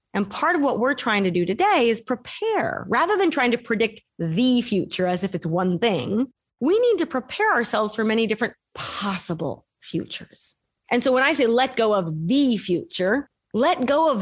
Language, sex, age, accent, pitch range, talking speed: English, female, 30-49, American, 195-270 Hz, 195 wpm